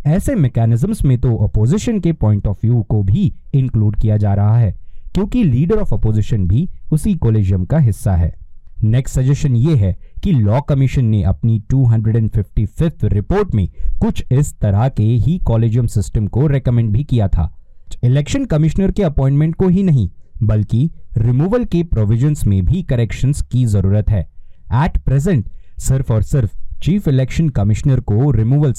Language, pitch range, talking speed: Hindi, 105-140 Hz, 85 wpm